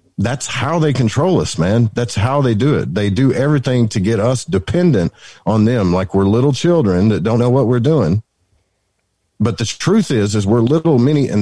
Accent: American